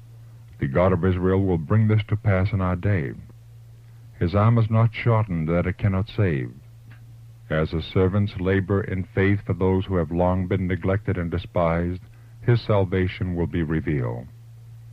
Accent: American